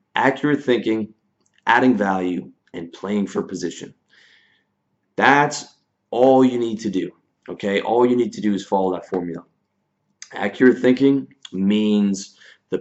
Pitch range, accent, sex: 95-115 Hz, American, male